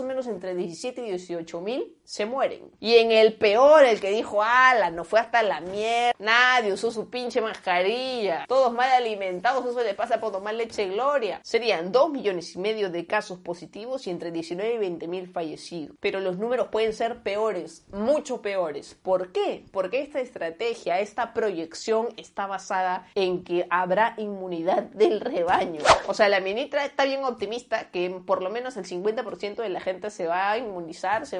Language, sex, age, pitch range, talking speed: Spanish, female, 30-49, 190-250 Hz, 180 wpm